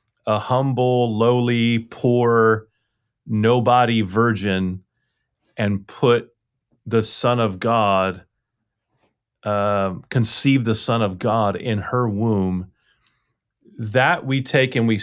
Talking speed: 105 wpm